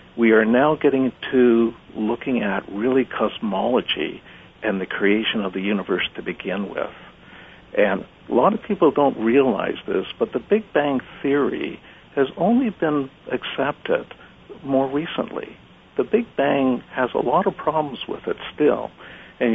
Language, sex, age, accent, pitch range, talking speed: English, male, 60-79, American, 120-160 Hz, 150 wpm